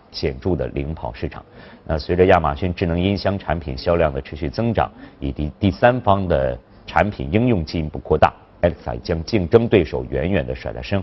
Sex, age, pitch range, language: male, 50-69, 75-105 Hz, Chinese